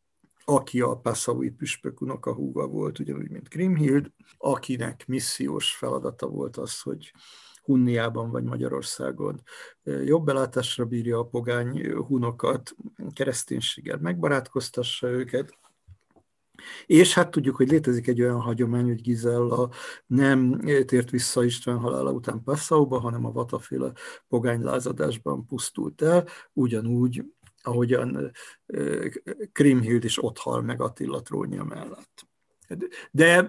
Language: Hungarian